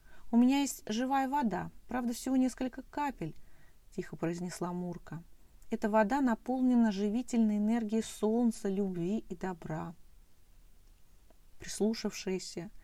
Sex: female